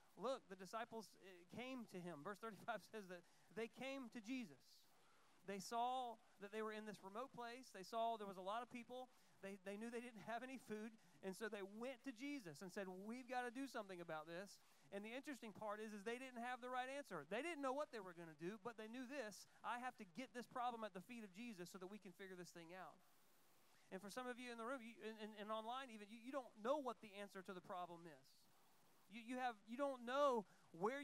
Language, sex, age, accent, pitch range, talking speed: English, male, 40-59, American, 200-245 Hz, 250 wpm